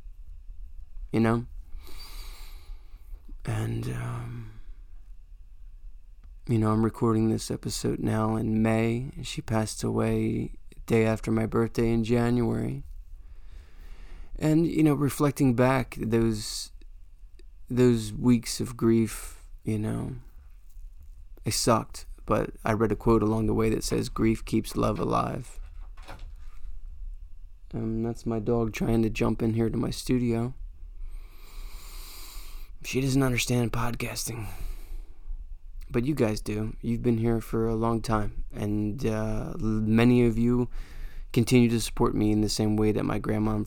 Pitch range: 75-115 Hz